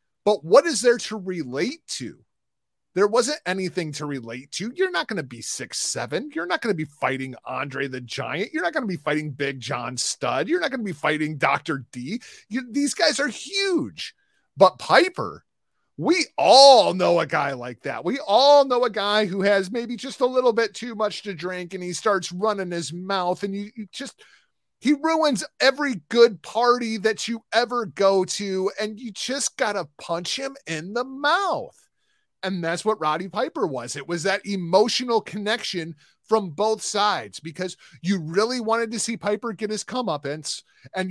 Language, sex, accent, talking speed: English, male, American, 190 wpm